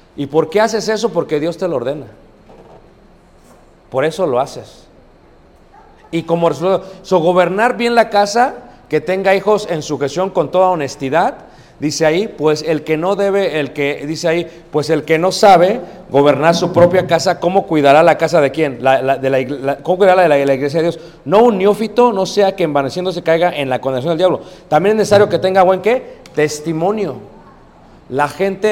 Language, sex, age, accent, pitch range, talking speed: Spanish, male, 40-59, Mexican, 150-195 Hz, 200 wpm